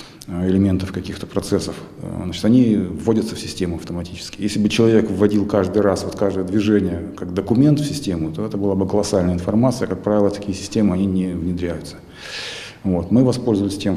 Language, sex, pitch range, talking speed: Russian, male, 95-110 Hz, 170 wpm